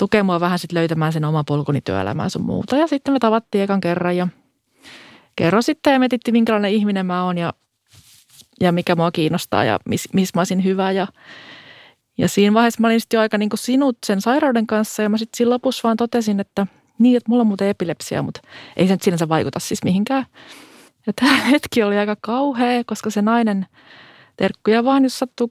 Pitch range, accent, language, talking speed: 180-230 Hz, native, Finnish, 195 wpm